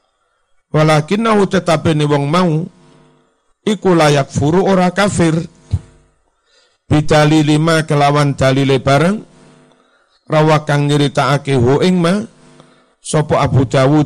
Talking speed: 95 wpm